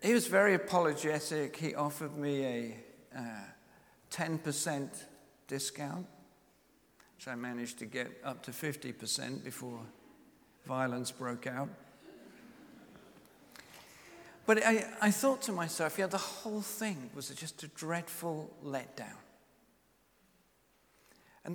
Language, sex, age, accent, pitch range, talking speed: English, male, 50-69, British, 150-200 Hz, 110 wpm